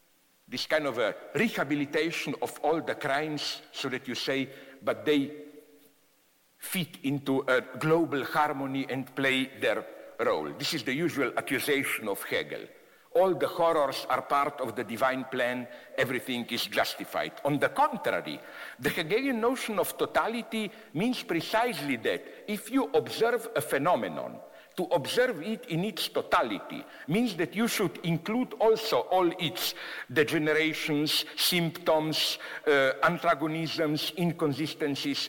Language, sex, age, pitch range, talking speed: English, male, 60-79, 145-215 Hz, 135 wpm